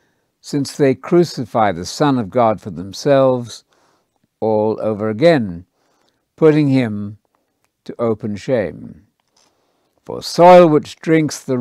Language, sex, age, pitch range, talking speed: English, male, 60-79, 110-160 Hz, 115 wpm